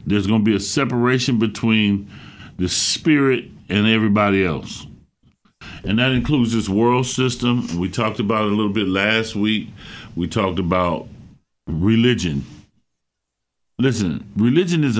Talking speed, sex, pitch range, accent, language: 135 wpm, male, 100-150 Hz, American, English